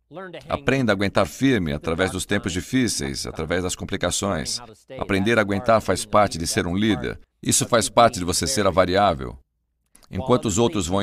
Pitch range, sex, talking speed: 85-110 Hz, male, 175 wpm